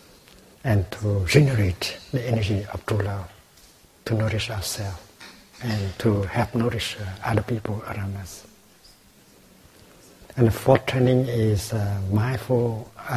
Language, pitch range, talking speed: English, 105-120 Hz, 130 wpm